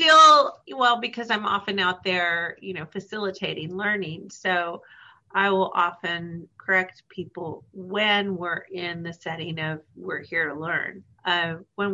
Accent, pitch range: American, 165-200 Hz